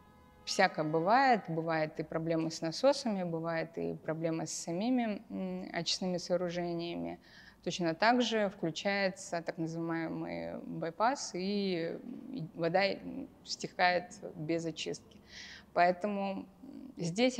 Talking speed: 95 wpm